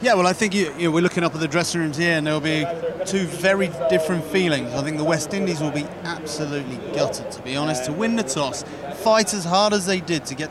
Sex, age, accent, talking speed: male, 30-49, British, 245 wpm